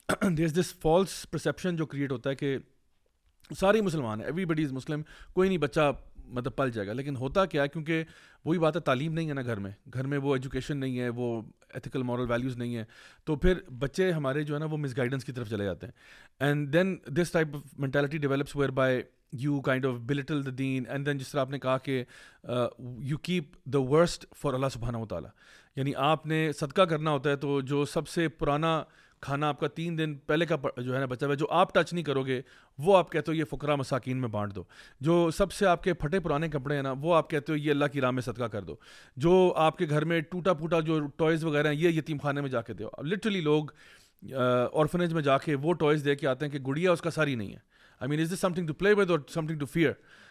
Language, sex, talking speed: Urdu, male, 195 wpm